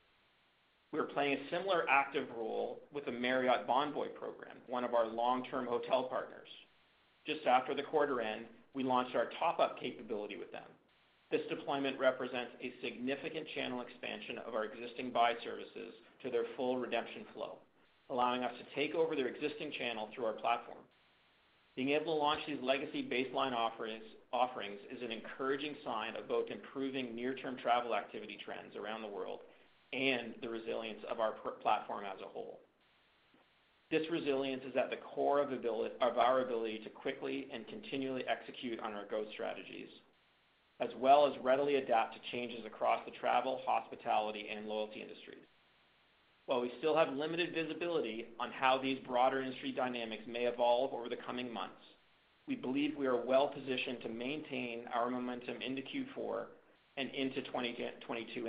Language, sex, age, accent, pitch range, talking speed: English, male, 40-59, American, 120-140 Hz, 160 wpm